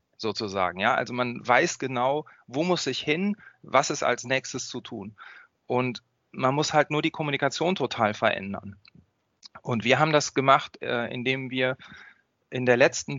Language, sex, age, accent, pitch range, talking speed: German, male, 30-49, German, 120-150 Hz, 160 wpm